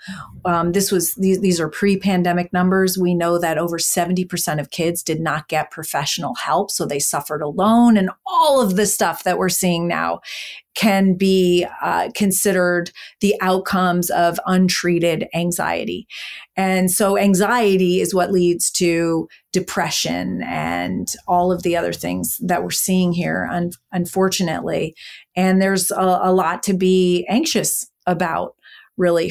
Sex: female